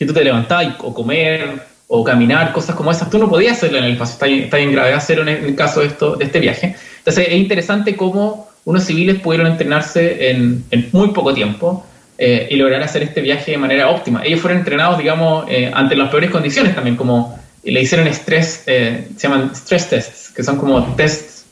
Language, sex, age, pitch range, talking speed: Spanish, male, 20-39, 130-175 Hz, 220 wpm